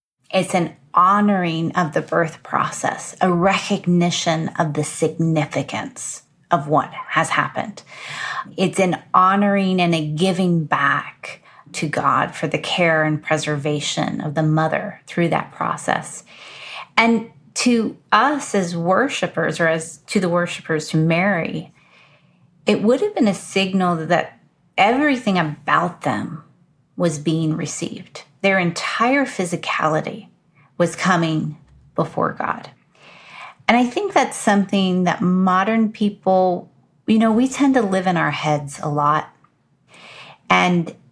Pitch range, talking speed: 160-205 Hz, 130 wpm